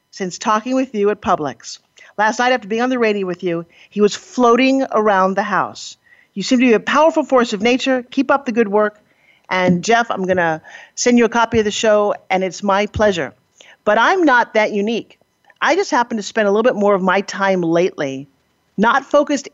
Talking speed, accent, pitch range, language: 220 wpm, American, 200-270 Hz, English